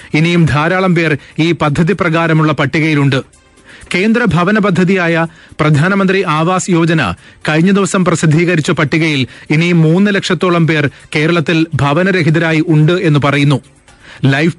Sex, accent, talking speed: male, native, 115 wpm